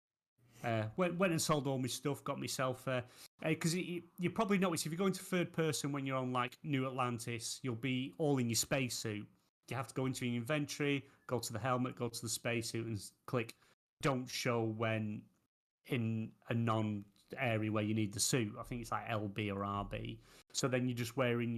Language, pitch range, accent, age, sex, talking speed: English, 115-155 Hz, British, 30-49, male, 210 wpm